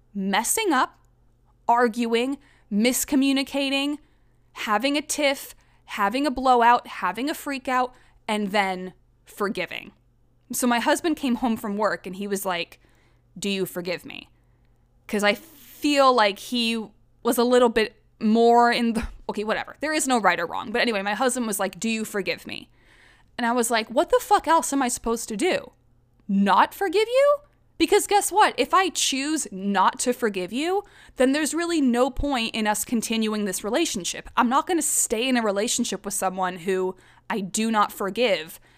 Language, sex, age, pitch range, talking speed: English, female, 20-39, 195-270 Hz, 175 wpm